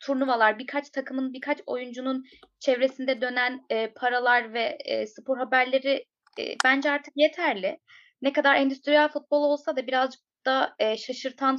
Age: 20-39